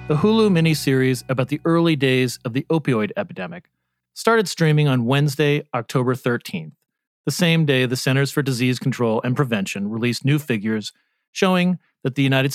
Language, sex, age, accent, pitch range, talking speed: English, male, 40-59, American, 125-160 Hz, 165 wpm